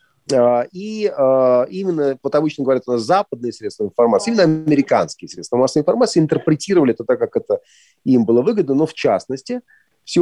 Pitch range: 115-180 Hz